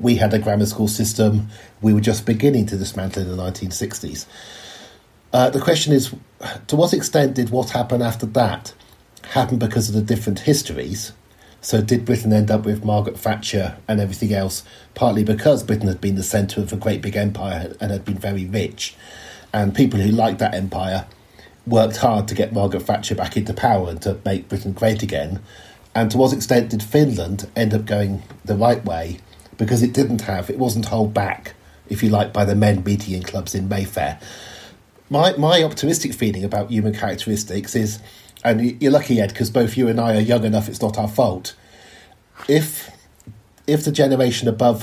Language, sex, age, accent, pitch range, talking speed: English, male, 40-59, British, 100-120 Hz, 190 wpm